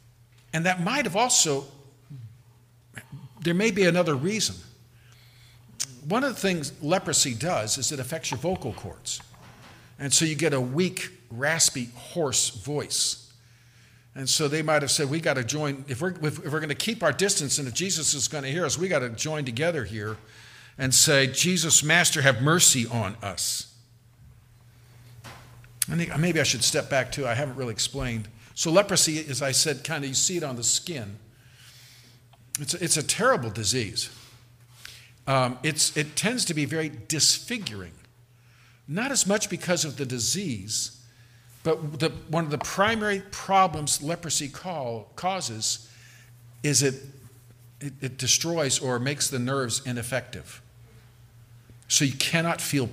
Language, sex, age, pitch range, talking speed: English, male, 50-69, 120-160 Hz, 160 wpm